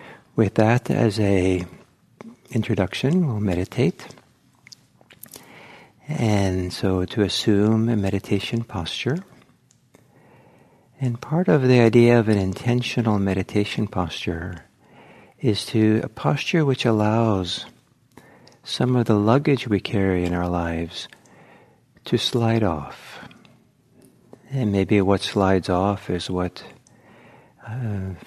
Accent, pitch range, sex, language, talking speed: American, 95-120 Hz, male, English, 105 wpm